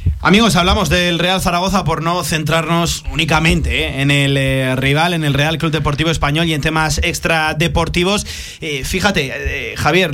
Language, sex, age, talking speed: Spanish, male, 30-49, 170 wpm